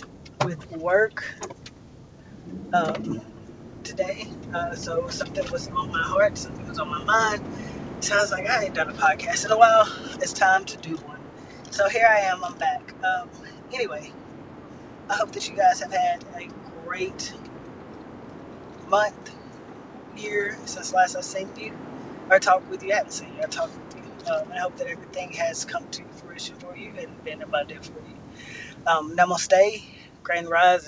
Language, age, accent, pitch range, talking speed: English, 20-39, American, 170-265 Hz, 160 wpm